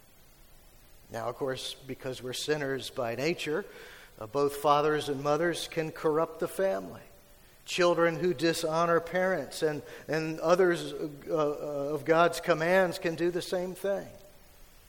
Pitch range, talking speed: 150-180 Hz, 135 wpm